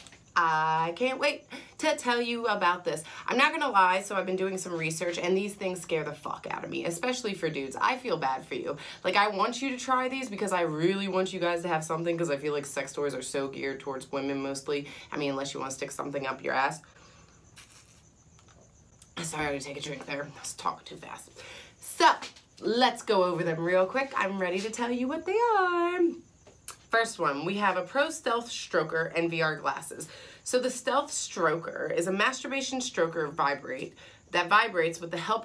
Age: 30-49